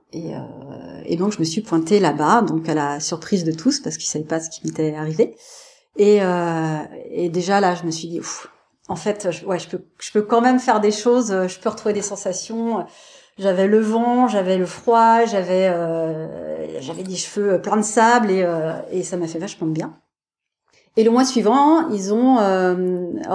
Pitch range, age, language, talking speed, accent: 170-220 Hz, 40-59, French, 205 wpm, French